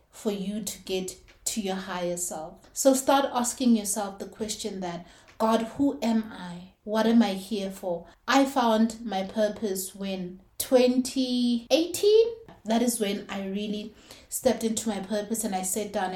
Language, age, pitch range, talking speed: English, 30-49, 190-230 Hz, 160 wpm